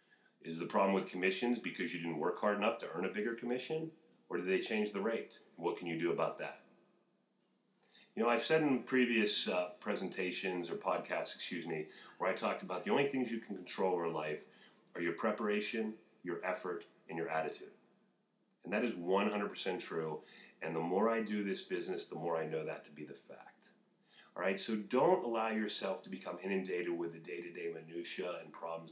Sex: male